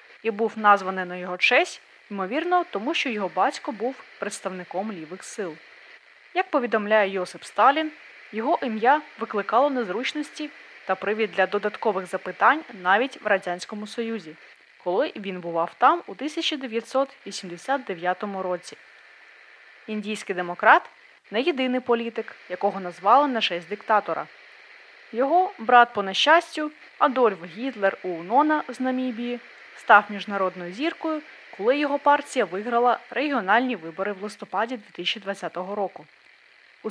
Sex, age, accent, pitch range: female, 20-39, native, 190-270 Hz